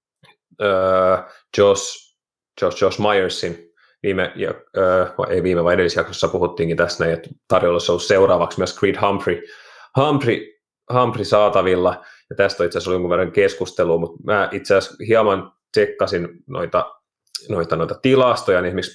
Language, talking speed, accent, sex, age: Finnish, 135 wpm, native, male, 30-49